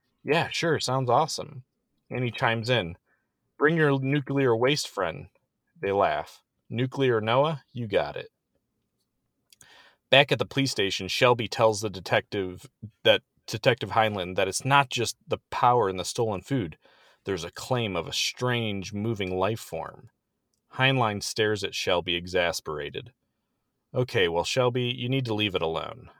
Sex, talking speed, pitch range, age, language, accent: male, 150 wpm, 105-135 Hz, 30-49, English, American